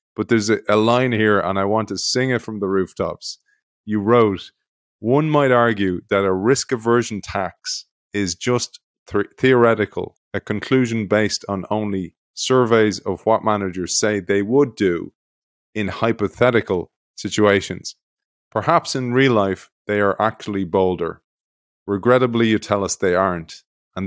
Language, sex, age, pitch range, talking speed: English, male, 30-49, 100-120 Hz, 145 wpm